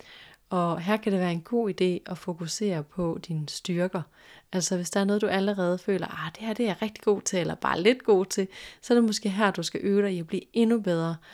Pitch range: 170-200 Hz